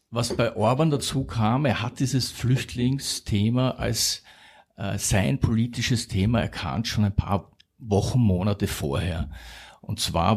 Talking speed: 135 wpm